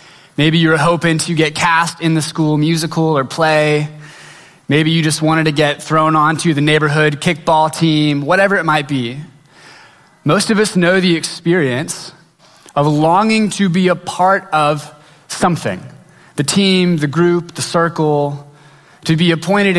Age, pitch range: 20-39, 150-180 Hz